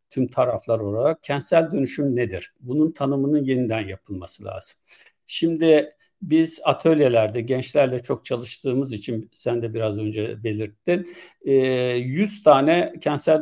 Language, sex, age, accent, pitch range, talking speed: Turkish, male, 60-79, native, 115-150 Hz, 115 wpm